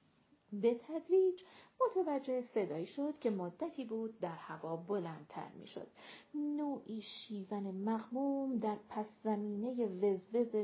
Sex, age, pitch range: female, 40-59, 210-300 Hz